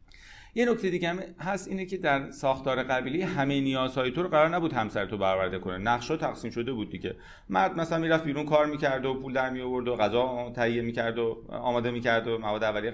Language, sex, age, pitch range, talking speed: Persian, male, 30-49, 105-150 Hz, 220 wpm